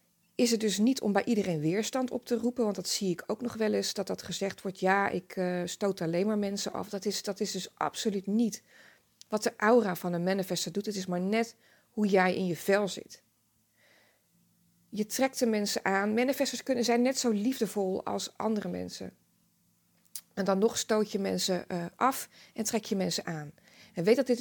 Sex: female